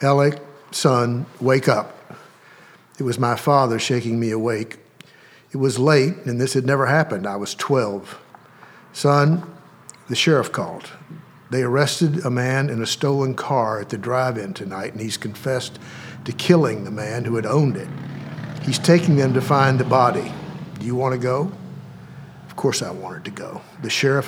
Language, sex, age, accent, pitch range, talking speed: English, male, 60-79, American, 120-140 Hz, 170 wpm